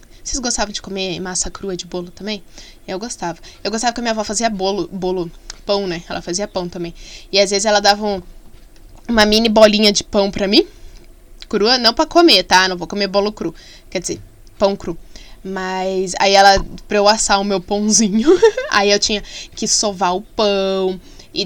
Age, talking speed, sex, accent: 10-29, 195 wpm, female, Brazilian